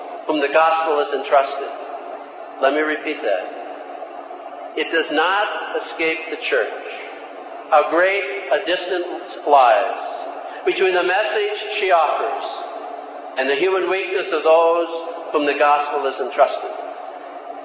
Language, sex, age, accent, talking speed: English, male, 50-69, American, 120 wpm